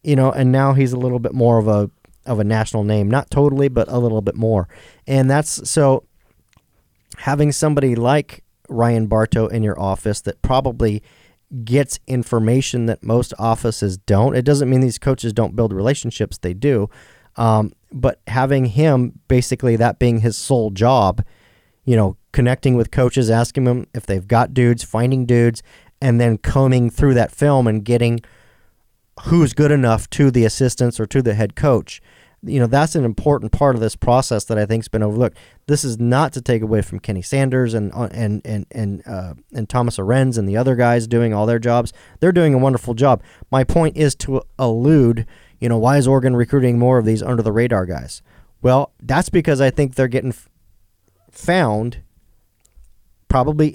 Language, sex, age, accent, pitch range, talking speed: English, male, 40-59, American, 110-135 Hz, 185 wpm